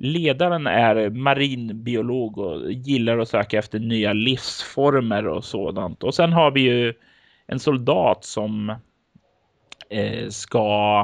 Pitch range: 110-140 Hz